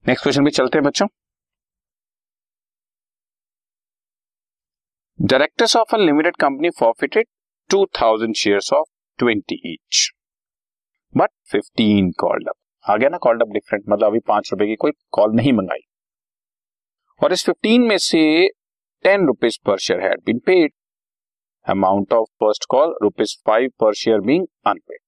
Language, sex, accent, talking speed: Hindi, male, native, 105 wpm